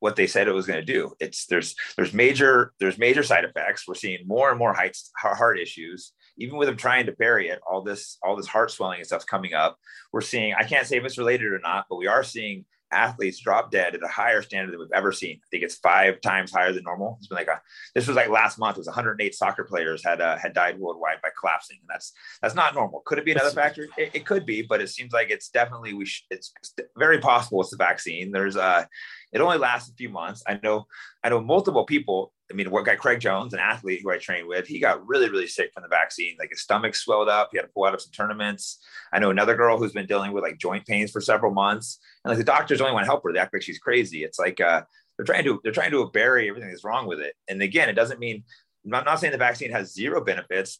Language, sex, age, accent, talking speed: English, male, 30-49, American, 270 wpm